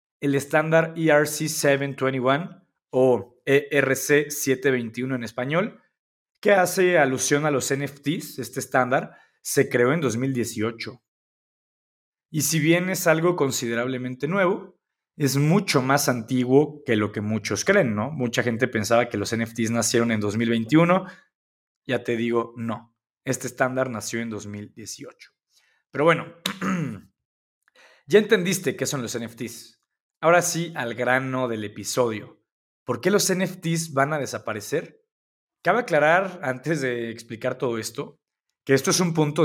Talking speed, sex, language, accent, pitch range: 130 wpm, male, Spanish, Mexican, 115-150 Hz